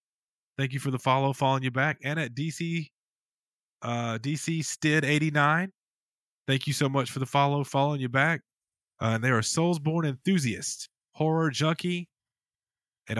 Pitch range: 110-150 Hz